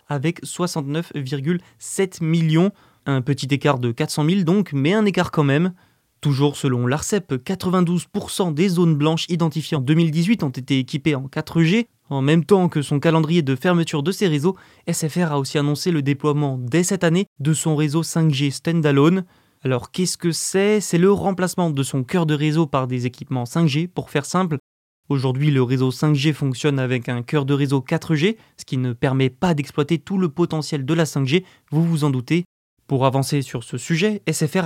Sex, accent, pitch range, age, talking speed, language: male, French, 140-175 Hz, 20-39, 185 wpm, French